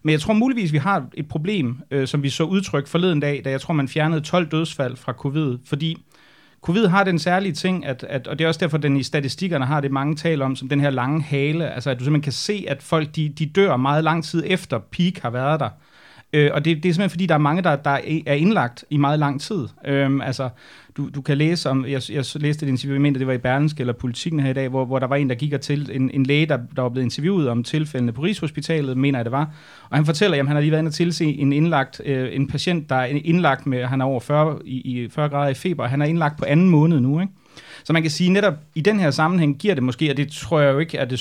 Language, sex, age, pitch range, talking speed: Danish, male, 30-49, 135-160 Hz, 280 wpm